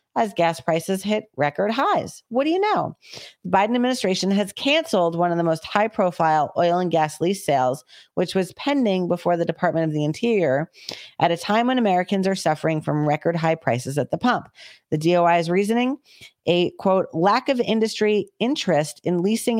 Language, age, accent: English, 40-59, American